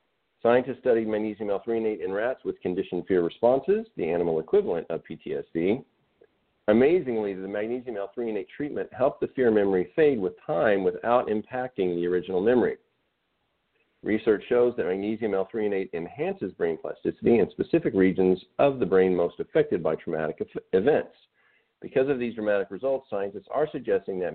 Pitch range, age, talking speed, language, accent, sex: 105-140 Hz, 50-69, 150 wpm, English, American, male